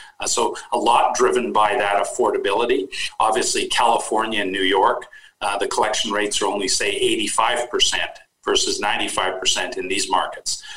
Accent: American